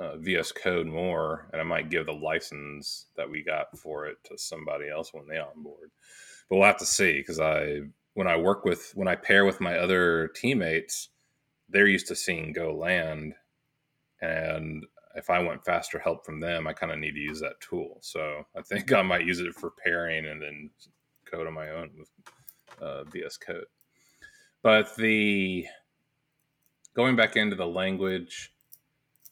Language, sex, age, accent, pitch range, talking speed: English, male, 30-49, American, 80-135 Hz, 180 wpm